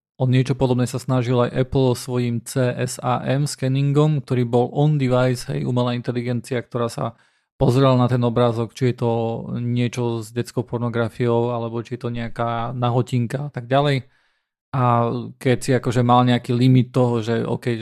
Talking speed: 160 wpm